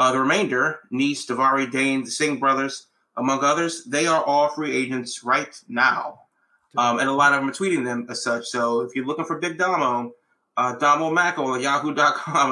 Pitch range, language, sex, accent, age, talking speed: 125-145 Hz, English, male, American, 30-49, 195 wpm